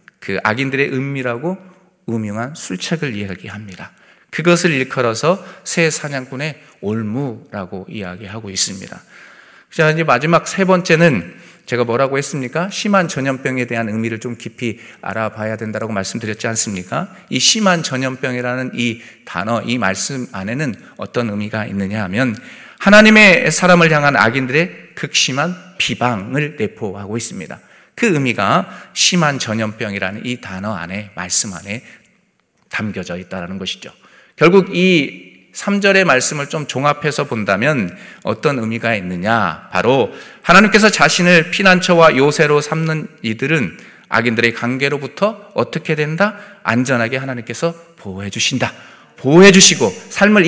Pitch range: 110-170 Hz